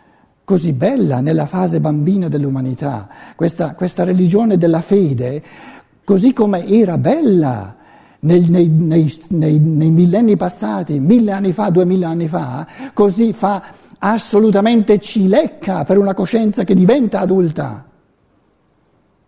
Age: 60-79